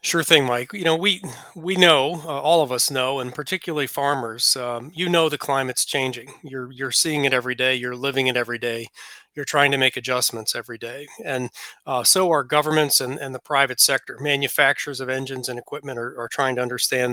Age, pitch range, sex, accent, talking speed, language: 40-59, 130-160 Hz, male, American, 210 wpm, English